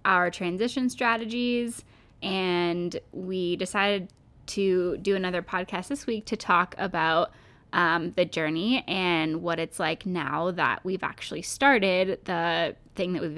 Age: 10-29